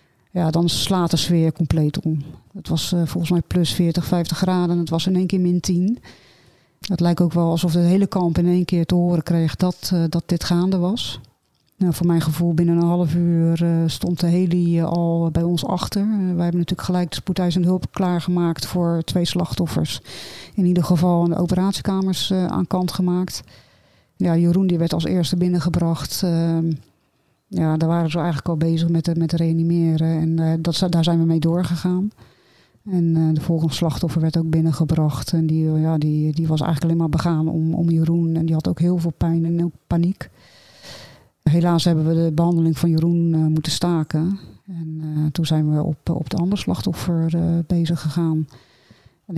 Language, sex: Dutch, female